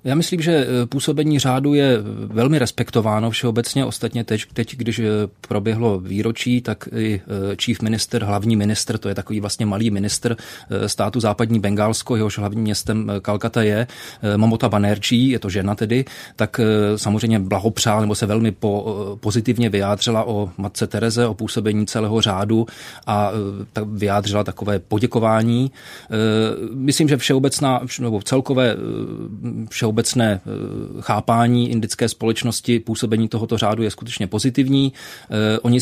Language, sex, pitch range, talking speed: Czech, male, 105-120 Hz, 130 wpm